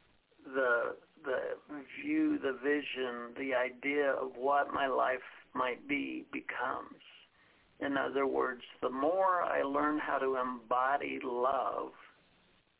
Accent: American